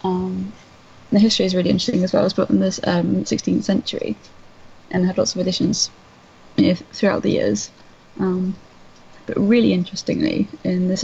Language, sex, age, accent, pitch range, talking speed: English, female, 20-39, British, 180-195 Hz, 180 wpm